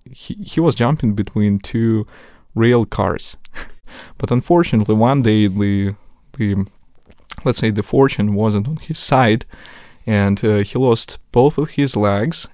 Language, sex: Polish, male